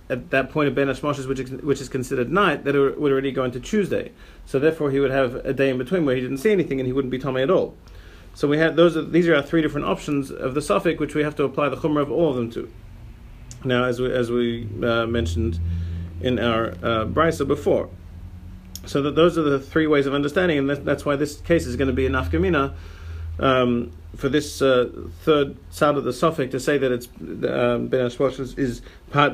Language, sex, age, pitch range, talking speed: English, male, 40-59, 120-145 Hz, 230 wpm